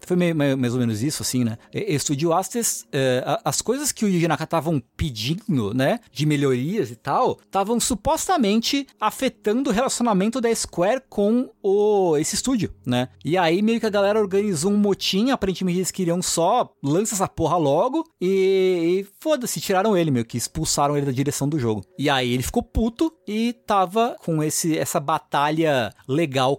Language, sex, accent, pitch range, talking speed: Portuguese, male, Brazilian, 125-215 Hz, 170 wpm